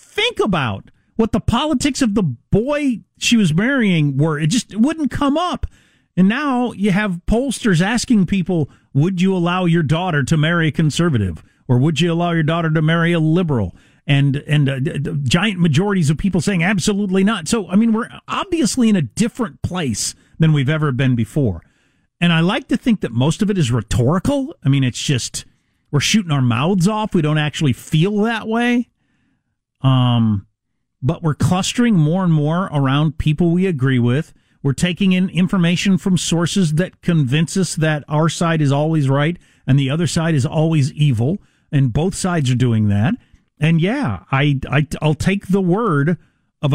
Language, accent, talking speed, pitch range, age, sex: English, American, 185 wpm, 140-195 Hz, 40-59, male